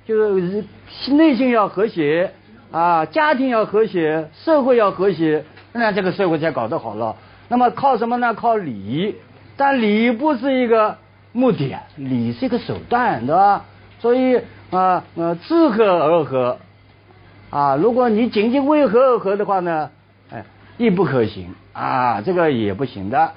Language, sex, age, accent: Chinese, male, 50-69, native